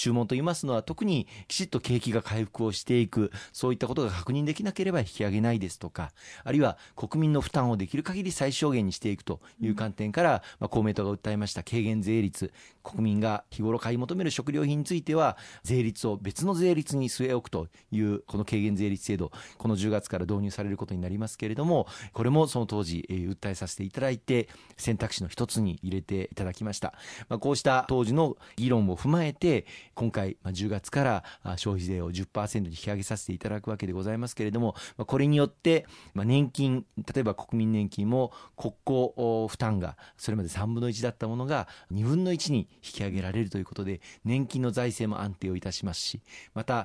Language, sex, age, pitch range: Japanese, male, 40-59, 100-130 Hz